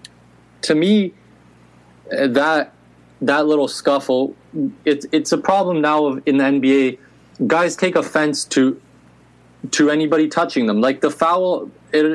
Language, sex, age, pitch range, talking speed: English, male, 20-39, 115-150 Hz, 130 wpm